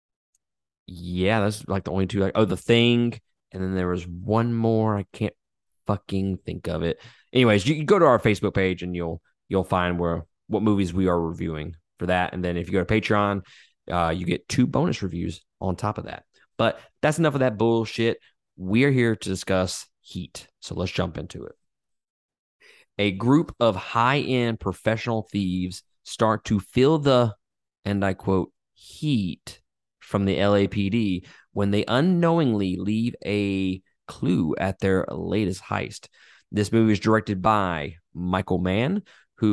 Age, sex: 20-39, male